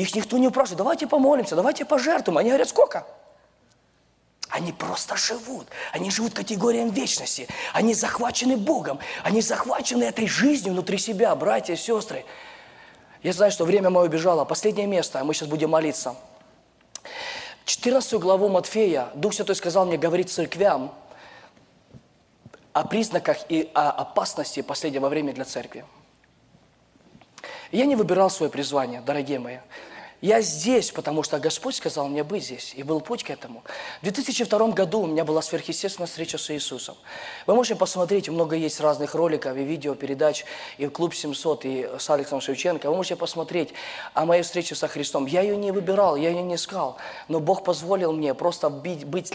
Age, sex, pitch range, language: 20-39, male, 155-200 Hz, Russian